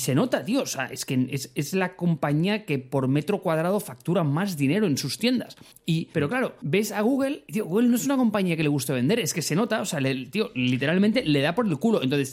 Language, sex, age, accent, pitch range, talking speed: Spanish, male, 30-49, Spanish, 135-200 Hz, 260 wpm